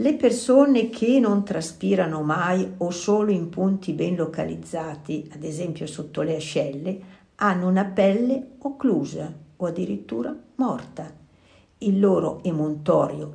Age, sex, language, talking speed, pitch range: 50-69, female, Italian, 120 wpm, 160-215 Hz